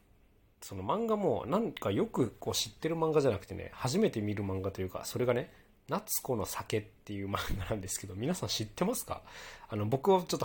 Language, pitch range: Japanese, 95-120 Hz